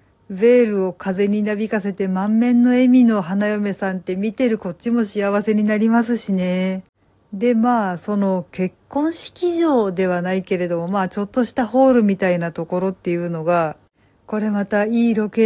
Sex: female